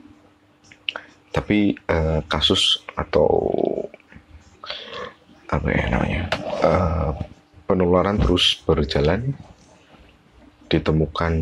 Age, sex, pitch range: 30-49, male, 75-90 Hz